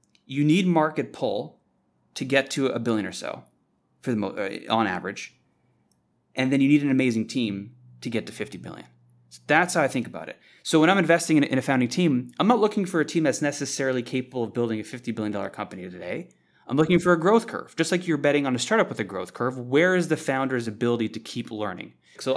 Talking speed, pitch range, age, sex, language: 235 wpm, 110-145 Hz, 30-49, male, English